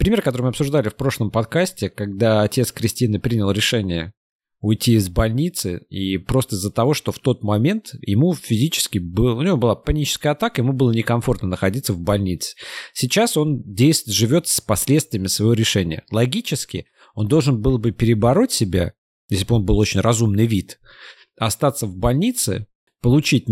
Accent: native